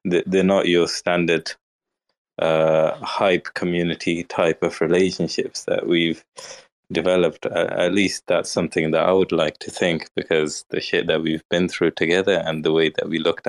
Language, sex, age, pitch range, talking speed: English, male, 20-39, 80-90 Hz, 165 wpm